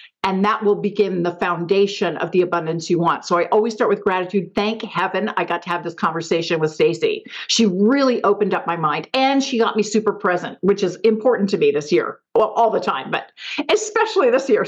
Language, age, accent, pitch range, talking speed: English, 50-69, American, 205-325 Hz, 220 wpm